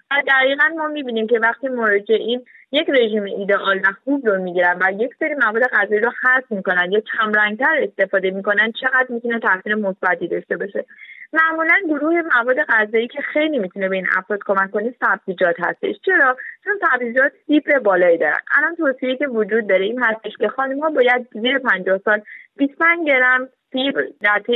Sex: female